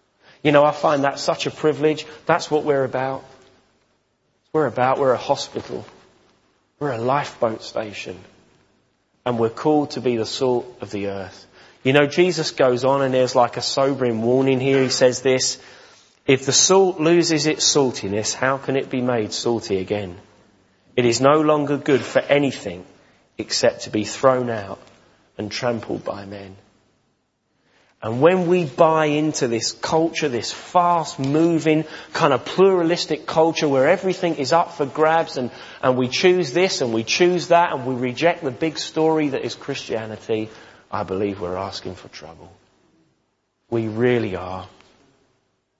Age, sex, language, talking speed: 30-49, male, English, 160 wpm